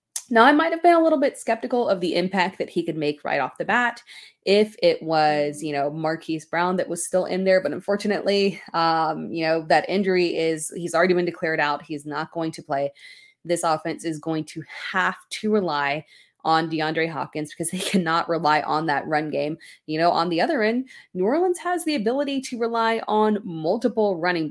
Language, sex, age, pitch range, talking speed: English, female, 20-39, 160-200 Hz, 210 wpm